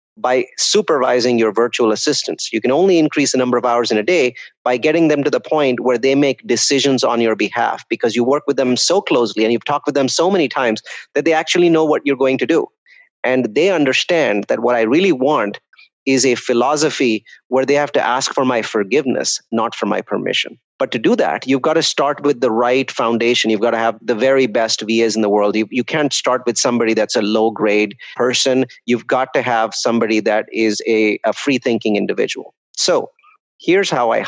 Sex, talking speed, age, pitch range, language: male, 215 wpm, 30-49, 115-145 Hz, English